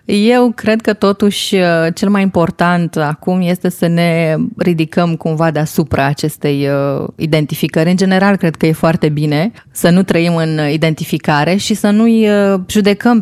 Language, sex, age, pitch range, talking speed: Romanian, female, 20-39, 160-195 Hz, 145 wpm